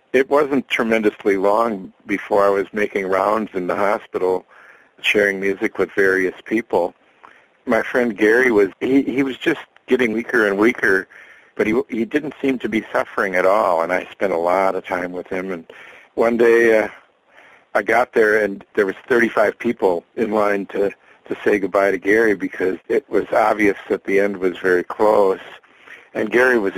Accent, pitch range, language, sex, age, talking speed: American, 95-115 Hz, English, male, 50-69, 180 wpm